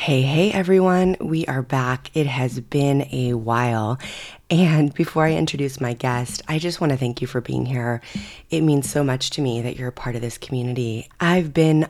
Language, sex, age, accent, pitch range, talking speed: English, female, 20-39, American, 130-160 Hz, 205 wpm